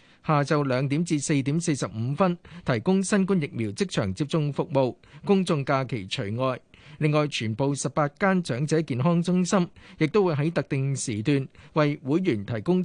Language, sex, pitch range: Chinese, male, 130-170 Hz